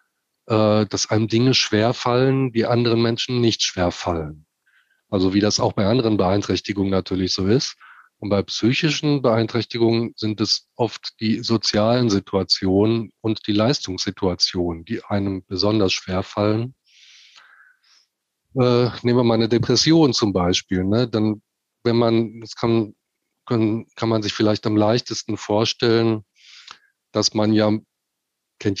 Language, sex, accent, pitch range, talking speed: German, male, German, 100-120 Hz, 135 wpm